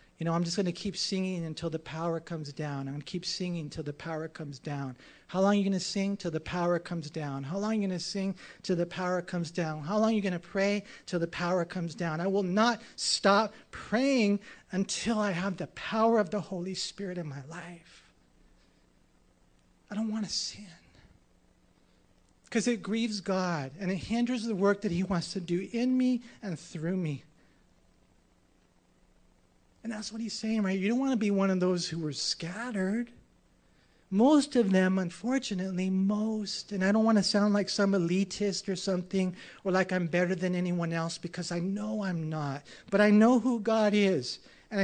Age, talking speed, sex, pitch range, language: 40-59, 205 wpm, male, 165-205 Hz, English